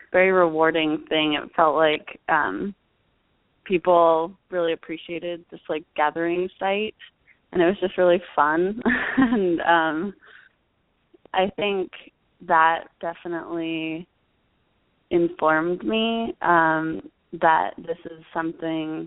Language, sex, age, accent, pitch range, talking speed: English, female, 20-39, American, 160-180 Hz, 105 wpm